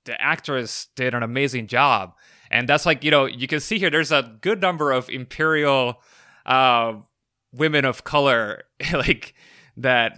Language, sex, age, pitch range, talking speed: English, male, 20-39, 105-130 Hz, 160 wpm